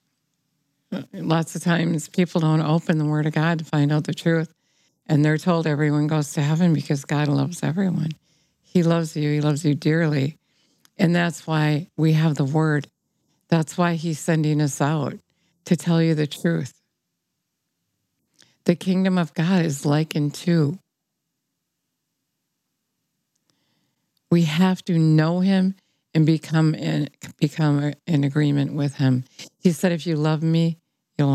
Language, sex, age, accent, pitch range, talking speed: English, female, 60-79, American, 150-175 Hz, 145 wpm